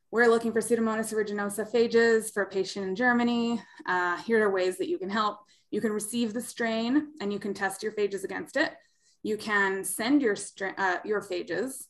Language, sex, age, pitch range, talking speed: English, female, 20-39, 190-235 Hz, 200 wpm